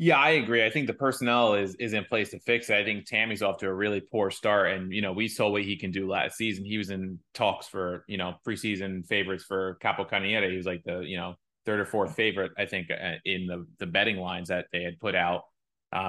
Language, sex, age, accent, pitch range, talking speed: English, male, 20-39, American, 95-120 Hz, 255 wpm